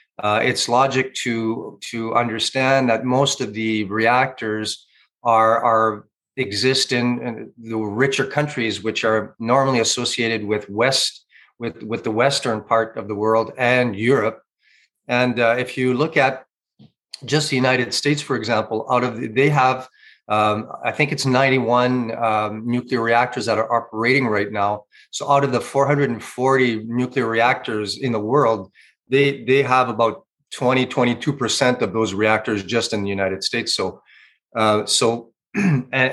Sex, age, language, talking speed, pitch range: male, 40-59, English, 150 wpm, 110-135 Hz